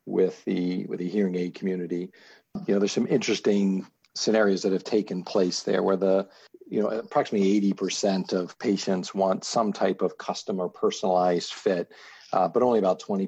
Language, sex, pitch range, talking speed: English, male, 90-100 Hz, 180 wpm